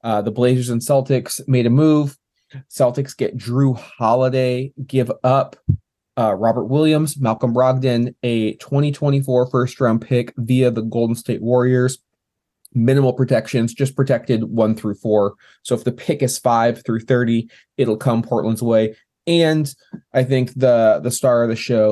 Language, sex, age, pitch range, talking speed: English, male, 20-39, 115-130 Hz, 160 wpm